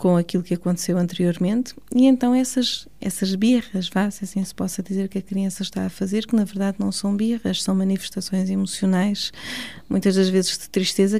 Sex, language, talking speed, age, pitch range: female, Portuguese, 195 wpm, 20-39, 190-220 Hz